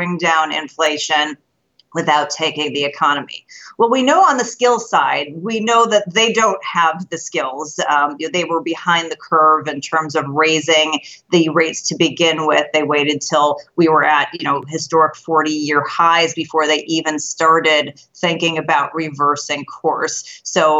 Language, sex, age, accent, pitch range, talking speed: English, female, 40-59, American, 150-175 Hz, 170 wpm